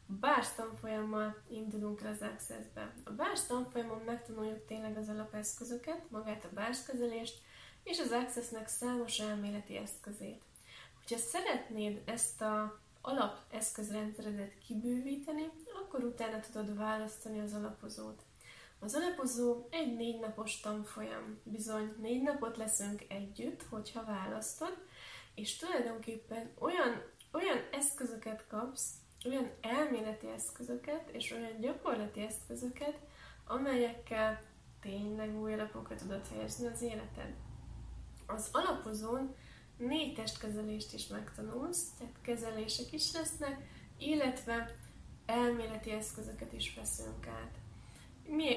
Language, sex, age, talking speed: Hungarian, female, 10-29, 105 wpm